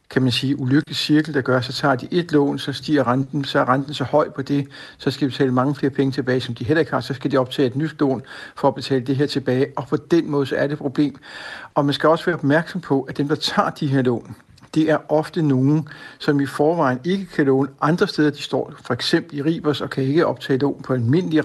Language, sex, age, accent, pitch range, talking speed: Danish, male, 60-79, native, 135-155 Hz, 270 wpm